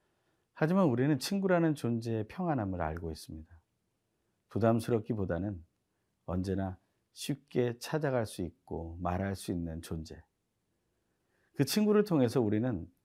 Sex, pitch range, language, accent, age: male, 85-120 Hz, Korean, native, 40-59